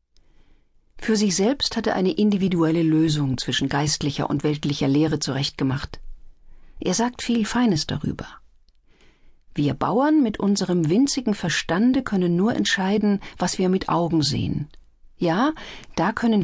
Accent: German